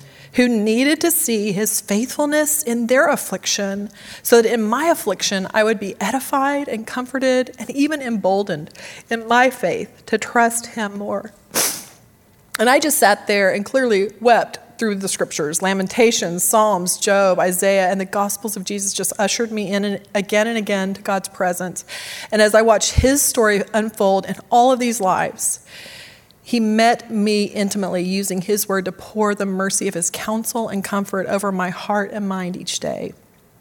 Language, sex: English, female